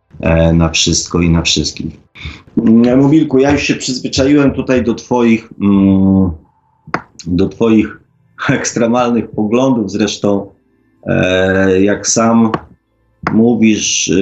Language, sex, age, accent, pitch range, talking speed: Polish, male, 30-49, native, 95-115 Hz, 90 wpm